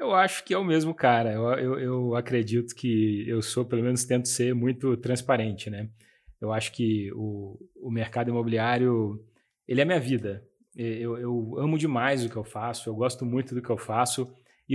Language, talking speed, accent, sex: Portuguese, 200 wpm, Brazilian, male